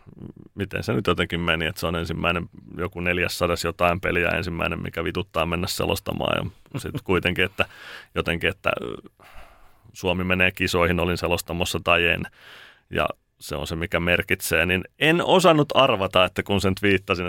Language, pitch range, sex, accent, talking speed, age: Finnish, 90-105 Hz, male, native, 155 wpm, 30-49